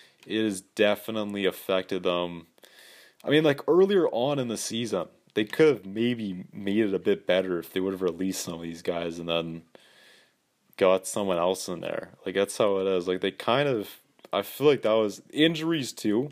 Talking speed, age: 200 wpm, 30-49